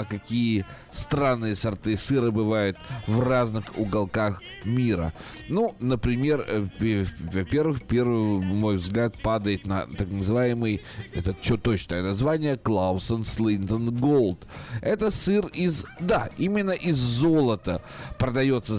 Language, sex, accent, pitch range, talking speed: Russian, male, native, 105-135 Hz, 110 wpm